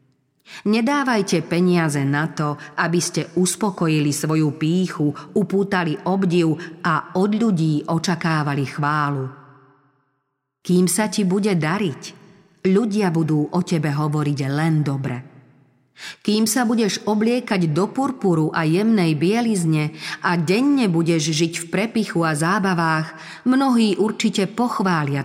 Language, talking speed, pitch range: Slovak, 115 wpm, 150-190 Hz